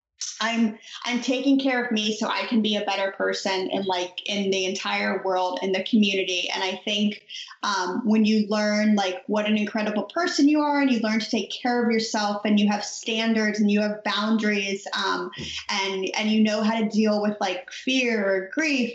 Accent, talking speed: American, 205 wpm